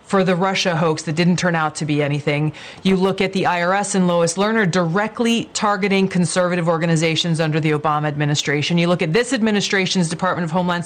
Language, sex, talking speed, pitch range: English, female, 195 wpm, 175-220 Hz